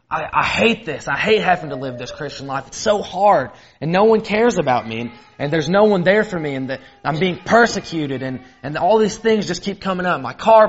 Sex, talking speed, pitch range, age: male, 255 wpm, 135-185 Hz, 20-39